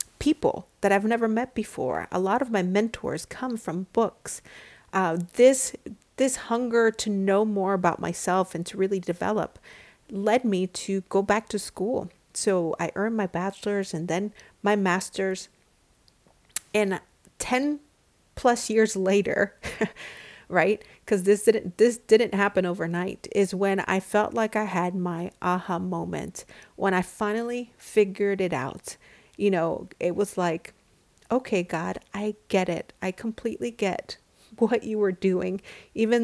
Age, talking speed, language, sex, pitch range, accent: 40-59, 150 wpm, English, female, 185-225 Hz, American